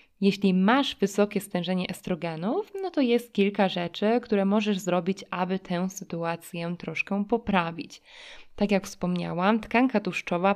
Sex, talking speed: female, 130 wpm